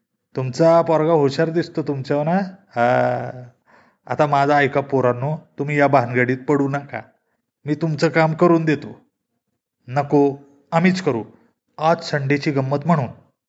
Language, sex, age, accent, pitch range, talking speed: Marathi, male, 30-49, native, 140-185 Hz, 125 wpm